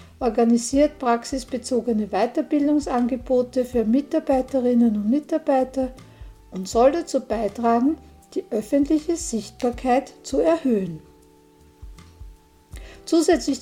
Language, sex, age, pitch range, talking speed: German, female, 60-79, 210-275 Hz, 75 wpm